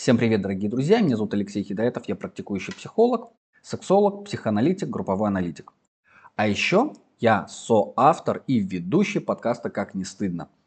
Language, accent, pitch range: Russian, native, 115-155 Hz